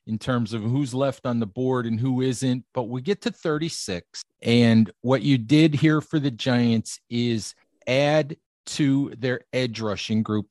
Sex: male